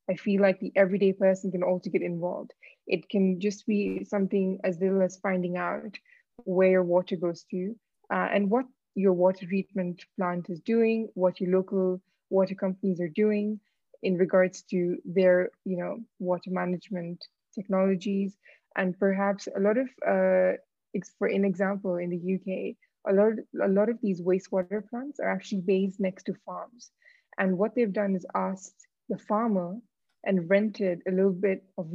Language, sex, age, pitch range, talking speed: English, female, 20-39, 185-210 Hz, 170 wpm